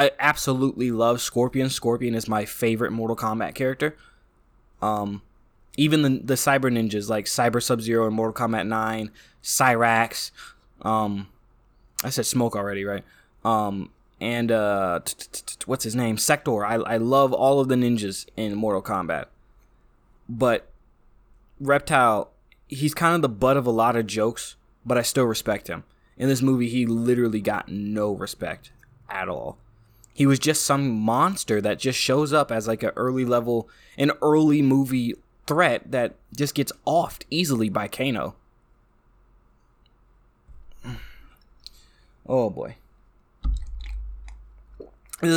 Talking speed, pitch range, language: 140 wpm, 110-135 Hz, English